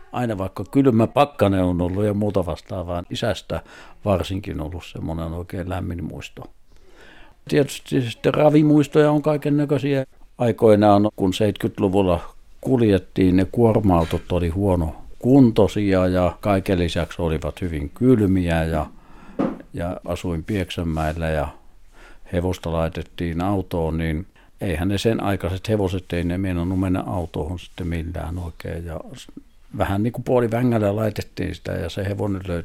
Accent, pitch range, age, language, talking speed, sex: native, 85-105 Hz, 60-79, Finnish, 130 wpm, male